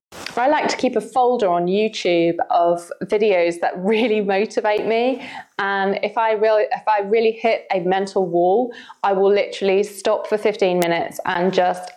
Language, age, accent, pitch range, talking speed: English, 20-39, British, 175-215 Hz, 160 wpm